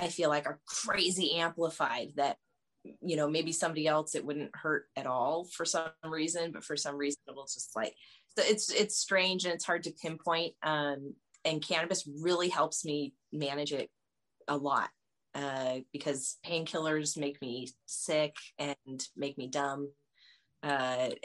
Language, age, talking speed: English, 30-49, 165 wpm